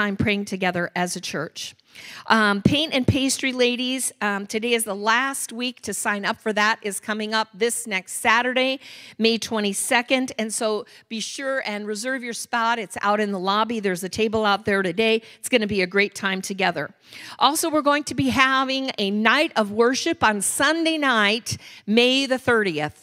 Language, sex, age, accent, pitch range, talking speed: English, female, 50-69, American, 200-255 Hz, 190 wpm